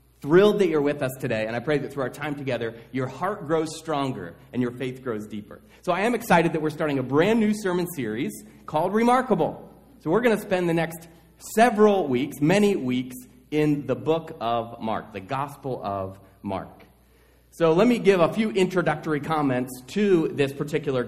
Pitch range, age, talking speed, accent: 120-160 Hz, 30-49, 195 wpm, American